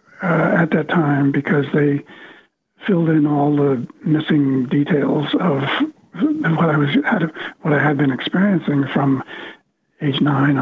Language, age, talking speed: English, 60-79, 145 wpm